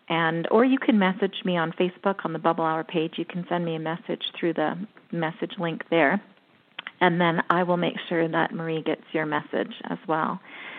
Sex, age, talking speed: female, 40-59, 205 wpm